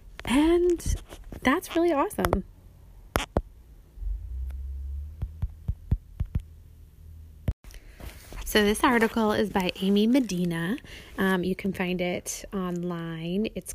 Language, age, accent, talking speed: English, 20-39, American, 80 wpm